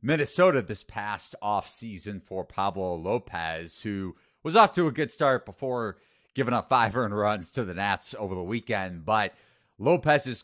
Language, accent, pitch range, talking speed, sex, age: English, American, 80-120 Hz, 160 wpm, male, 30-49